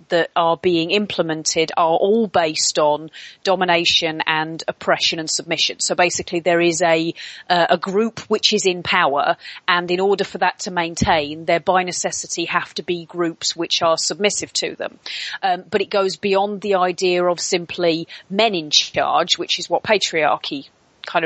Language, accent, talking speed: English, British, 170 wpm